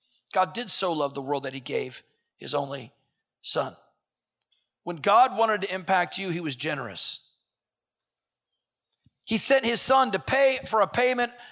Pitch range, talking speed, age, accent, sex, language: 150-210 Hz, 155 wpm, 50-69, American, male, English